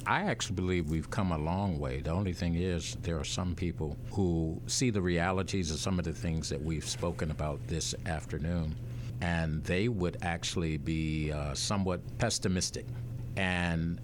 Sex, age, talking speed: male, 60-79, 170 wpm